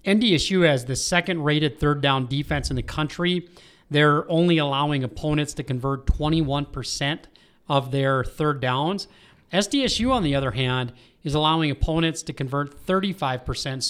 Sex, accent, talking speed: male, American, 135 wpm